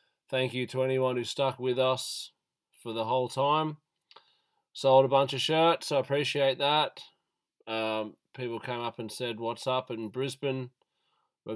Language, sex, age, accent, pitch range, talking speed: English, male, 20-39, Australian, 110-130 Hz, 160 wpm